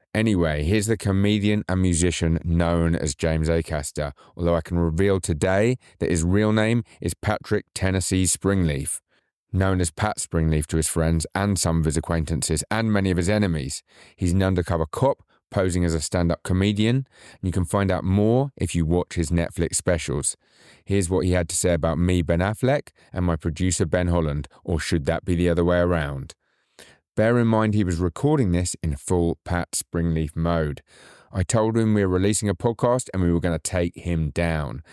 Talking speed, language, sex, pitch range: 190 wpm, English, male, 85-105 Hz